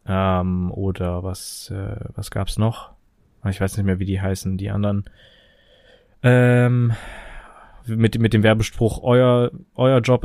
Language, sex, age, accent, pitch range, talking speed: German, male, 20-39, German, 105-120 Hz, 140 wpm